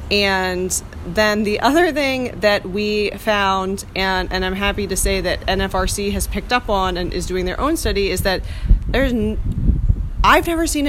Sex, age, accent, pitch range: female, 30-49, American, 180-225 Hz